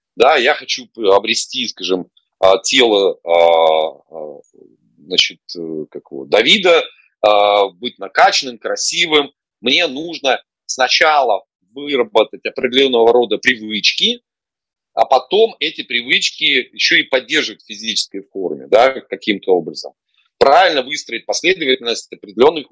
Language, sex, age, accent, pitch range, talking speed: Russian, male, 30-49, native, 105-165 Hz, 100 wpm